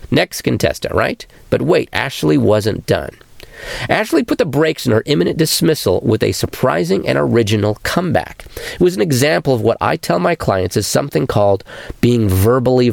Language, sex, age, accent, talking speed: English, male, 40-59, American, 170 wpm